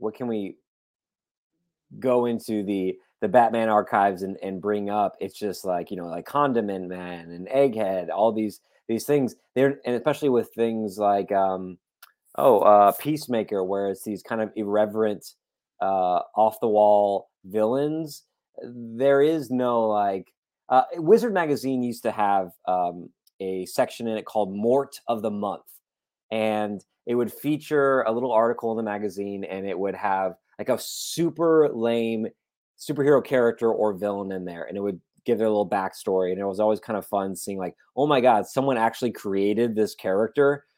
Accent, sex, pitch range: American, male, 100-125 Hz